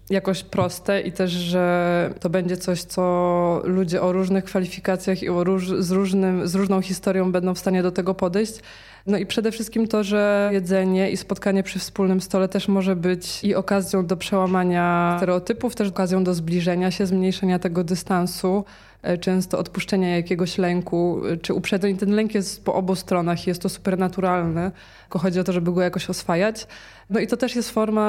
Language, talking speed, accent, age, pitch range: Polish, 175 wpm, native, 20-39, 180-195 Hz